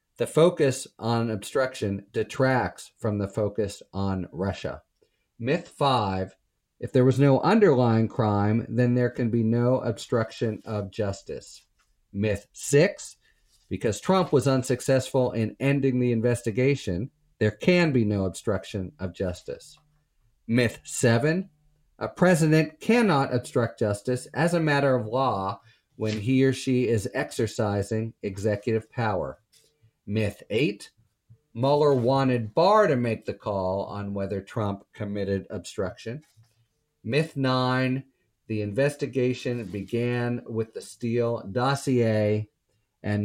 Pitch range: 105-130 Hz